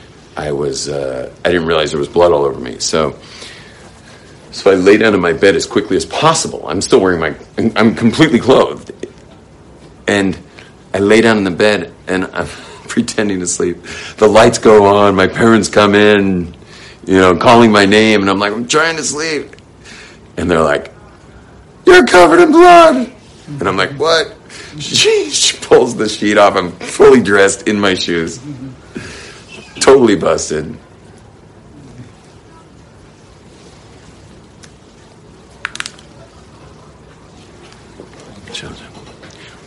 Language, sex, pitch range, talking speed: English, male, 95-130 Hz, 135 wpm